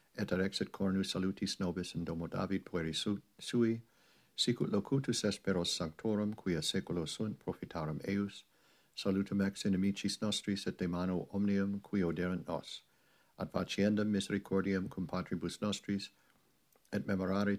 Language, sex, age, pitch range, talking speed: English, male, 60-79, 90-100 Hz, 130 wpm